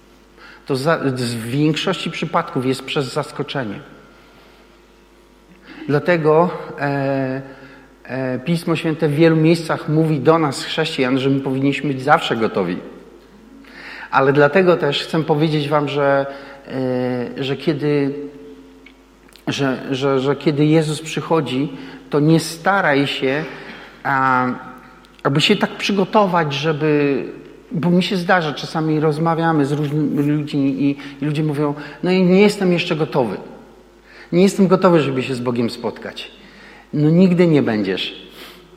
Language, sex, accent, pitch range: Polish, male, native, 140-180 Hz